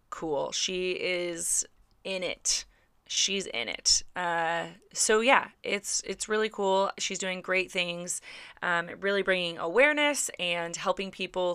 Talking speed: 135 wpm